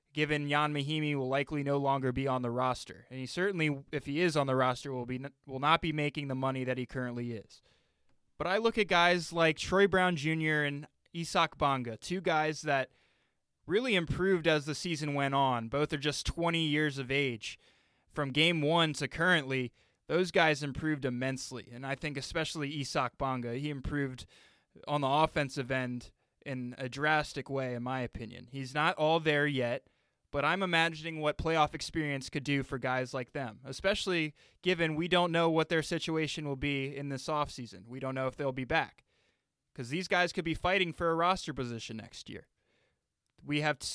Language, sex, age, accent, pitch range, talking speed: English, male, 20-39, American, 130-165 Hz, 195 wpm